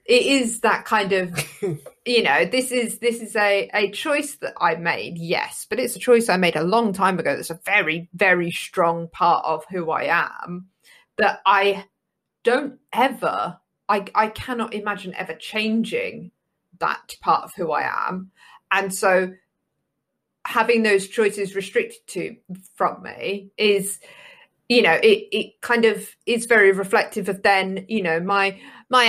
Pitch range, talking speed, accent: 185-235 Hz, 165 wpm, British